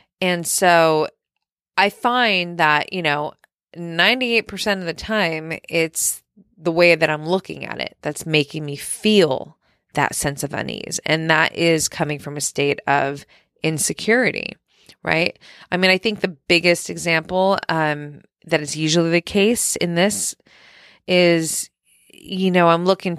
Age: 20-39